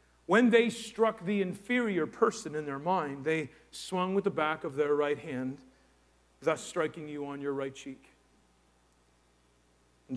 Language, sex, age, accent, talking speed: English, male, 40-59, American, 155 wpm